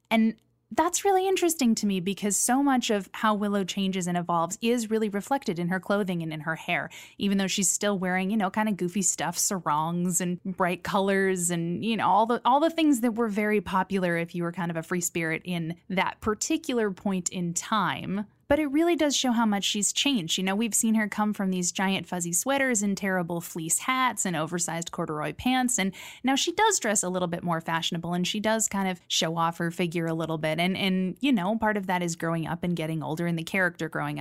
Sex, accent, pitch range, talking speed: female, American, 170-215 Hz, 235 wpm